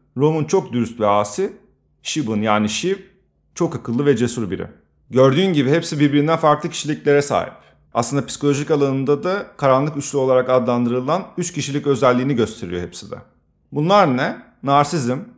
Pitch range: 115-155 Hz